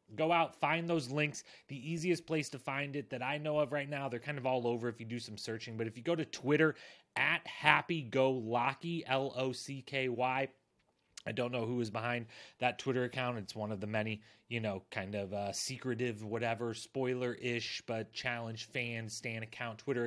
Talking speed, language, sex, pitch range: 190 wpm, English, male, 110-140 Hz